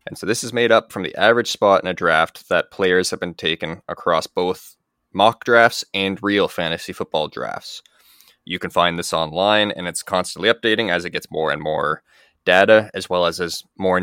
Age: 20-39